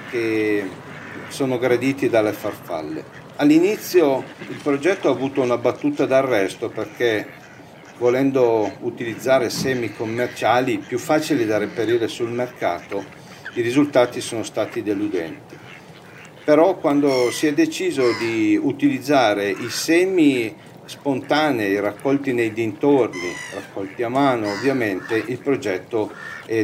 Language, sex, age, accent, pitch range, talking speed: Italian, male, 50-69, native, 125-195 Hz, 110 wpm